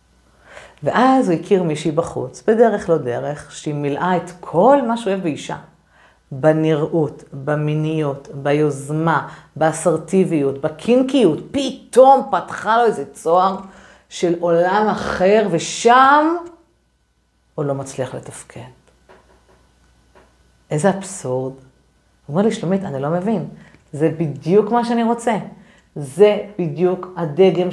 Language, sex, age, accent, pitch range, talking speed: Hebrew, female, 50-69, native, 145-195 Hz, 110 wpm